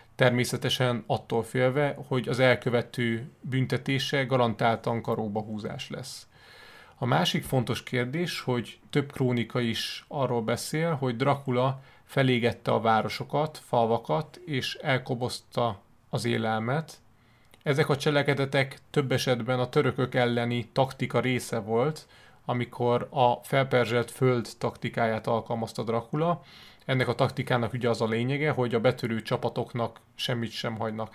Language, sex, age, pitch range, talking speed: Hungarian, male, 30-49, 115-130 Hz, 120 wpm